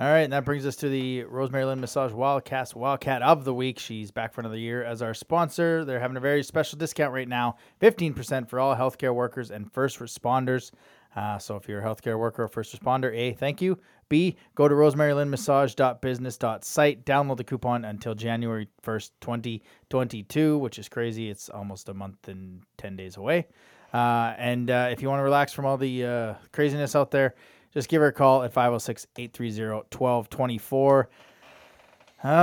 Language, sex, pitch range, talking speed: English, male, 115-145 Hz, 180 wpm